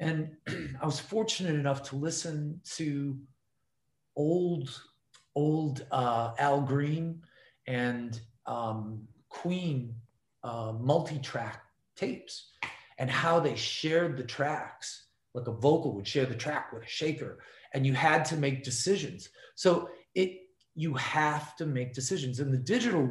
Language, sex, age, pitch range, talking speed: English, male, 40-59, 125-155 Hz, 130 wpm